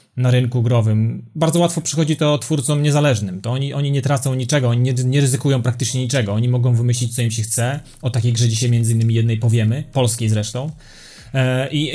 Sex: male